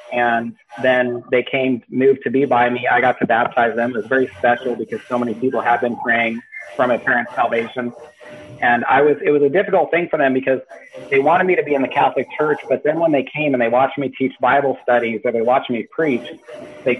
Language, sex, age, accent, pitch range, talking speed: English, male, 40-59, American, 120-140 Hz, 235 wpm